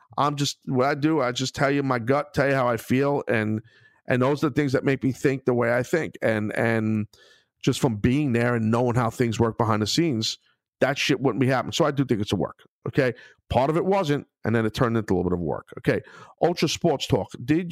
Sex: male